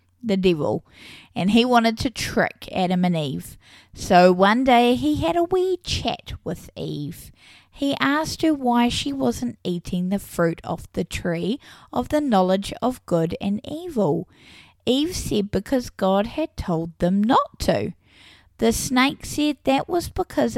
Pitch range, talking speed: 175-245 Hz, 155 wpm